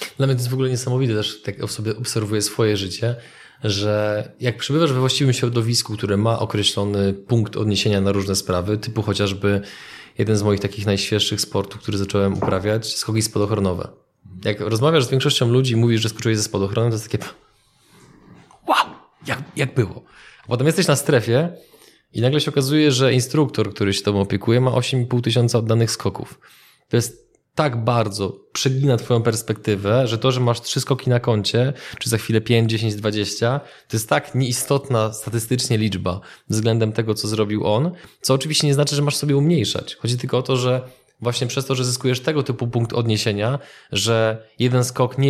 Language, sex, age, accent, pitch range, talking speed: Polish, male, 20-39, native, 110-130 Hz, 180 wpm